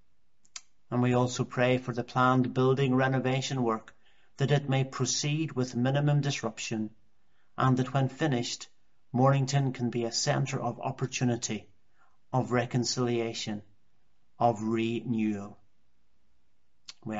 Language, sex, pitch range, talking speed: English, male, 115-135 Hz, 115 wpm